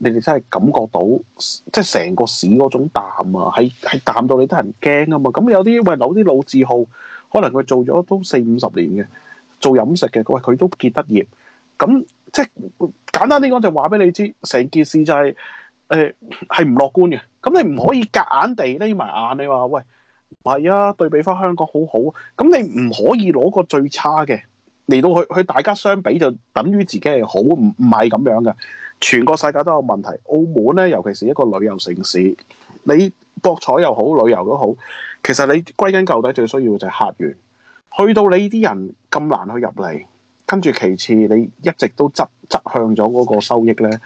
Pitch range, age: 120-190 Hz, 30-49